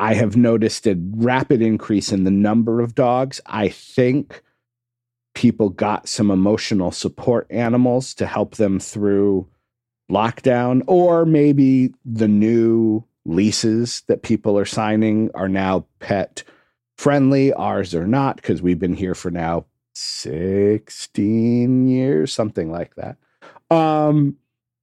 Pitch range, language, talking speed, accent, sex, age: 95-120 Hz, English, 125 wpm, American, male, 50-69